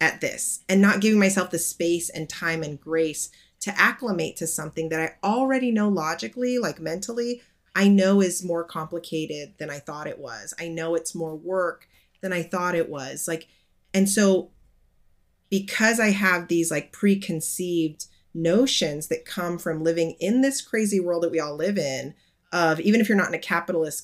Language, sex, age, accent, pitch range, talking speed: English, female, 30-49, American, 150-190 Hz, 185 wpm